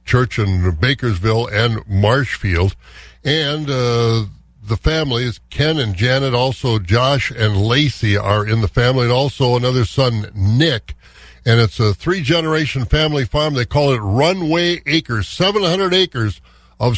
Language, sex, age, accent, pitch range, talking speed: English, male, 60-79, American, 110-145 Hz, 140 wpm